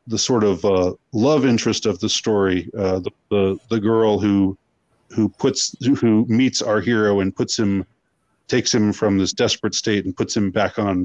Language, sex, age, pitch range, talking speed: English, male, 40-59, 95-115 Hz, 190 wpm